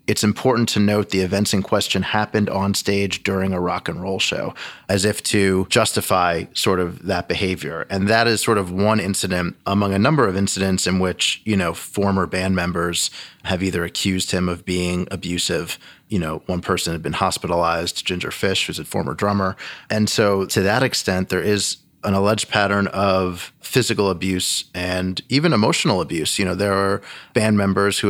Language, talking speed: English, 190 wpm